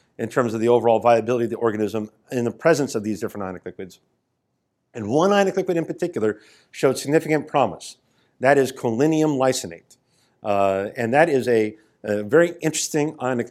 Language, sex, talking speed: English, male, 175 wpm